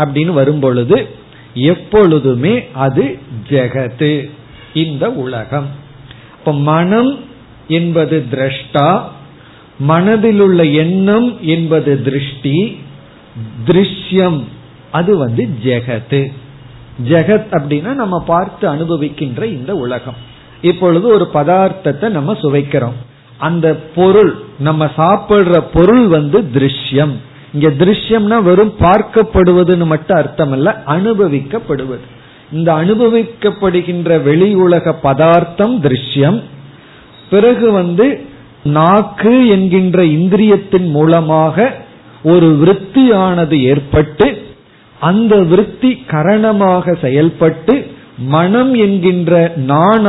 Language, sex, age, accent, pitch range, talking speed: Tamil, male, 50-69, native, 140-190 Hz, 55 wpm